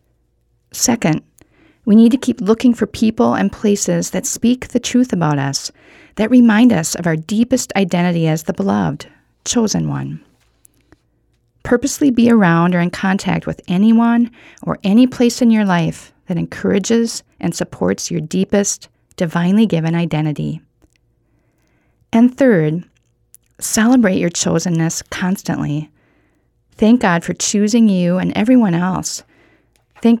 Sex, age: female, 40-59